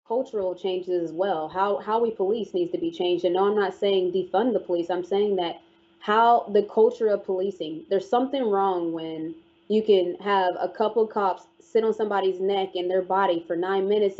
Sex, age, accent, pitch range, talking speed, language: female, 20-39, American, 185-225 Hz, 205 wpm, English